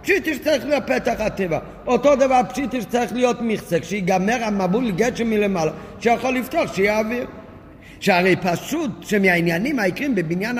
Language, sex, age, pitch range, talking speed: Hebrew, male, 50-69, 170-230 Hz, 145 wpm